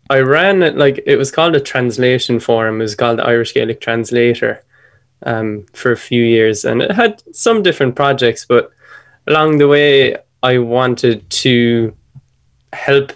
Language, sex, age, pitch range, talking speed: English, male, 10-29, 115-135 Hz, 160 wpm